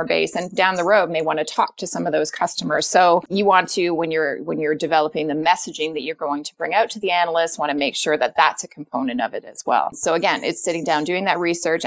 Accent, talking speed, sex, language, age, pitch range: American, 275 wpm, female, English, 30-49, 155-200 Hz